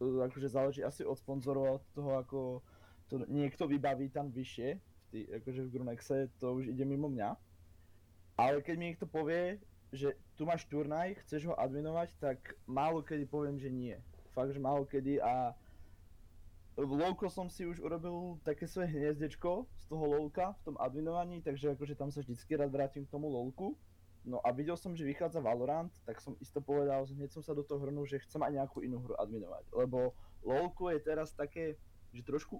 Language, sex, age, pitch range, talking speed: Czech, male, 20-39, 115-155 Hz, 185 wpm